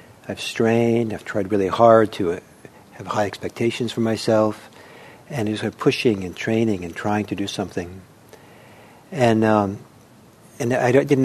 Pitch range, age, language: 100-125 Hz, 60-79, English